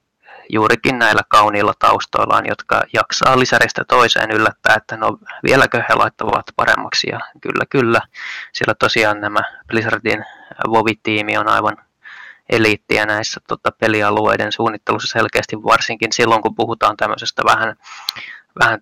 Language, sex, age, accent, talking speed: Finnish, male, 20-39, native, 120 wpm